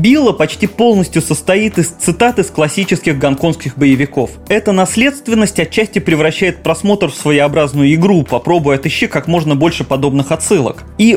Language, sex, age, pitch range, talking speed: Russian, male, 20-39, 150-205 Hz, 140 wpm